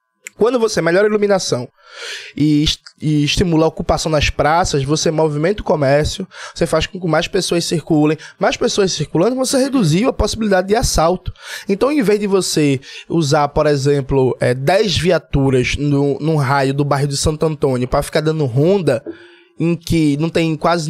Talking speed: 180 wpm